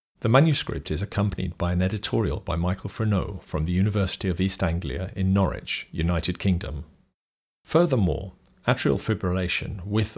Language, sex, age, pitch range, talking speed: English, male, 40-59, 85-105 Hz, 140 wpm